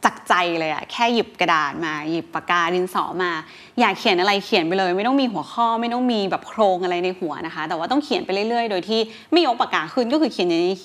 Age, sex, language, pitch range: 20-39, female, Thai, 185-245 Hz